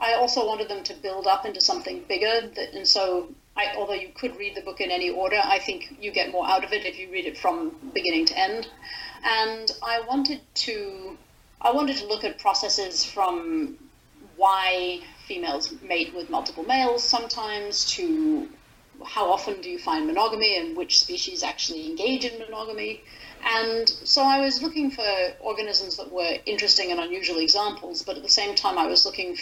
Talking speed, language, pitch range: 180 wpm, English, 190-320 Hz